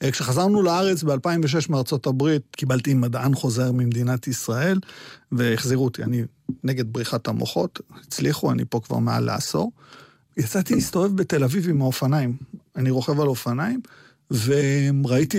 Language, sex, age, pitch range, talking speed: Hebrew, male, 40-59, 130-170 Hz, 130 wpm